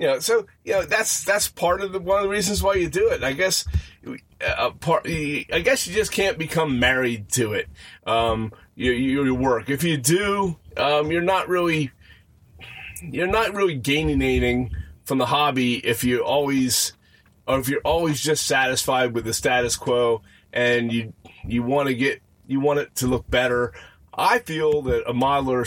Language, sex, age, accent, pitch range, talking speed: English, male, 30-49, American, 115-160 Hz, 185 wpm